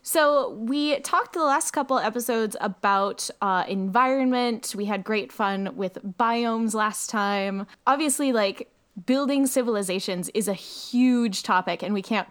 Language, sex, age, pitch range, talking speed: English, female, 10-29, 190-245 Hz, 140 wpm